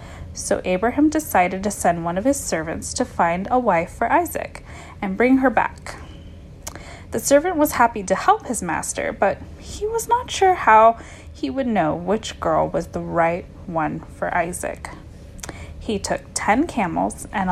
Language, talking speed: English, 170 wpm